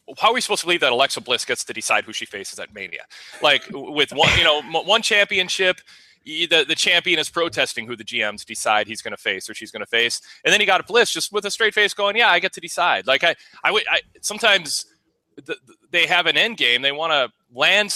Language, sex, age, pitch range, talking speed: English, male, 30-49, 115-180 Hz, 245 wpm